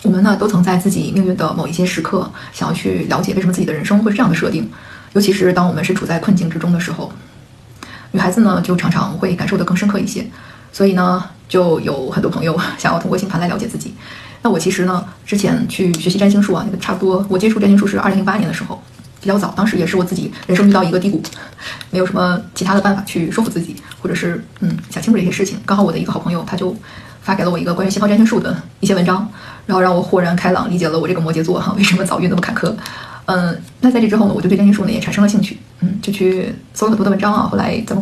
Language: Chinese